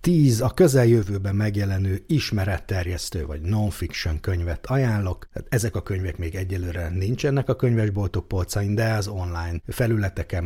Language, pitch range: Hungarian, 90-110 Hz